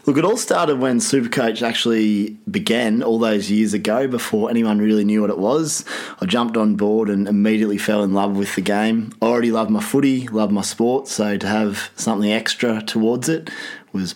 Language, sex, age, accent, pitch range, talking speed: English, male, 20-39, Australian, 105-135 Hz, 200 wpm